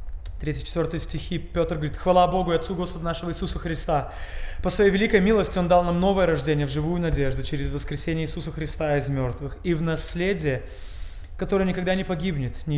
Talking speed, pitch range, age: 180 wpm, 135-185 Hz, 20-39